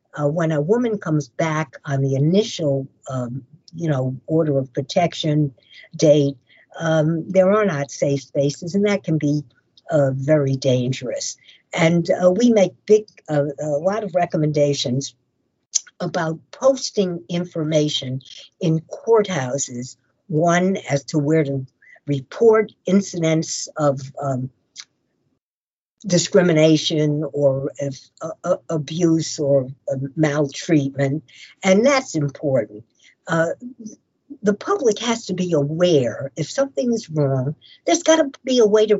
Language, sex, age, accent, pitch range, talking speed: English, female, 60-79, American, 140-190 Hz, 125 wpm